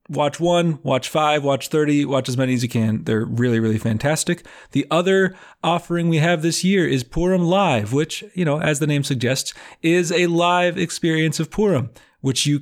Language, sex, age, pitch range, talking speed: English, male, 30-49, 120-160 Hz, 195 wpm